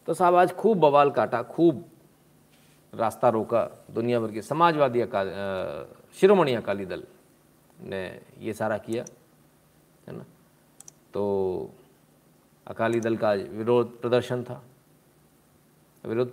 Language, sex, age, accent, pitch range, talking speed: Hindi, male, 40-59, native, 120-155 Hz, 115 wpm